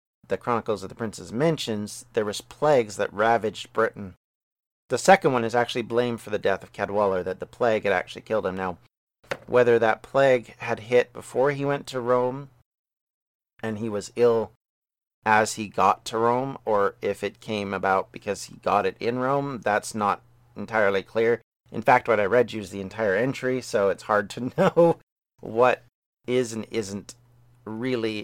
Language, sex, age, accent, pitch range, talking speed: English, male, 40-59, American, 110-130 Hz, 180 wpm